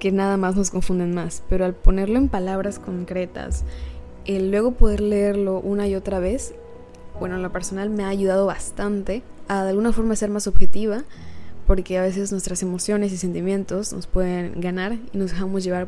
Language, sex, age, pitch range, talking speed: English, female, 20-39, 185-210 Hz, 185 wpm